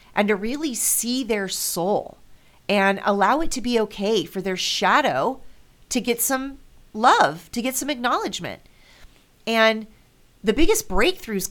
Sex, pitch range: female, 165-210 Hz